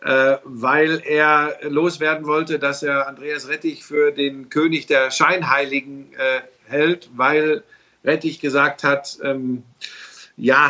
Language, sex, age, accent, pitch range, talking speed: German, male, 50-69, German, 140-175 Hz, 120 wpm